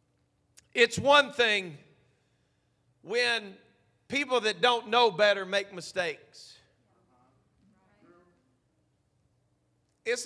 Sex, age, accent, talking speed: male, 40-59, American, 70 wpm